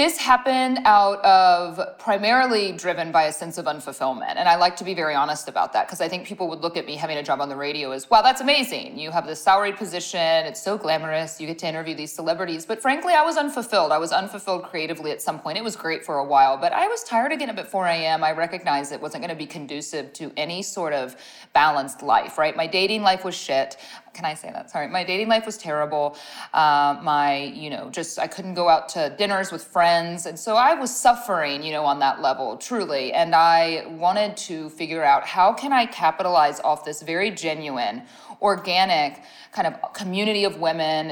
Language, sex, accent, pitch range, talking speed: English, female, American, 155-200 Hz, 225 wpm